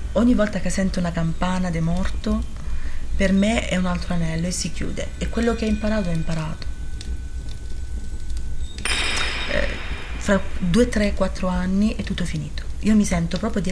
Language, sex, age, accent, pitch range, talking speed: Italian, female, 30-49, native, 160-210 Hz, 165 wpm